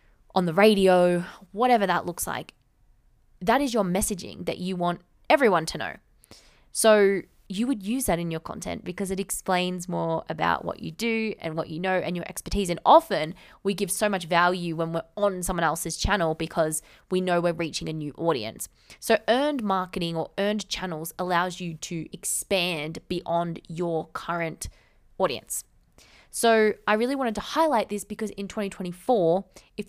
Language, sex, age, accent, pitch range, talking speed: English, female, 20-39, Australian, 170-205 Hz, 175 wpm